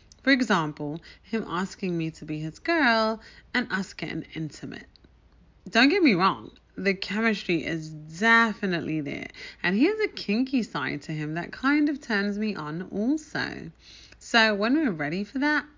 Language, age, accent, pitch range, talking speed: English, 30-49, British, 170-265 Hz, 165 wpm